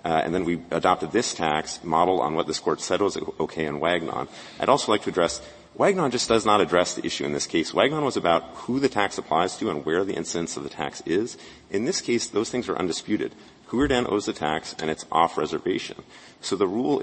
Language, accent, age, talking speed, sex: English, American, 40-59, 235 wpm, male